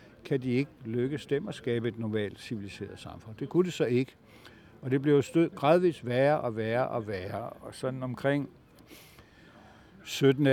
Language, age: Danish, 60-79